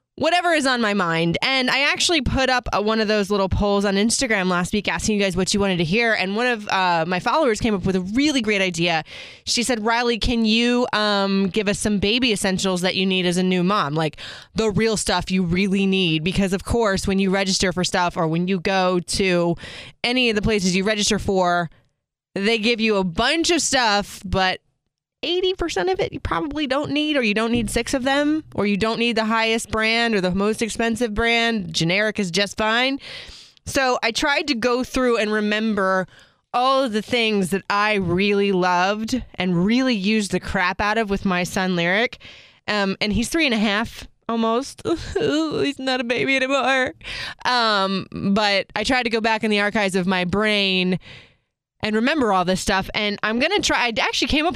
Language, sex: English, female